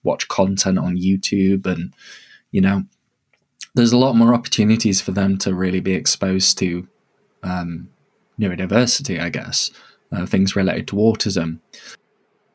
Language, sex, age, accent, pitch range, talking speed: English, male, 20-39, British, 95-115 Hz, 135 wpm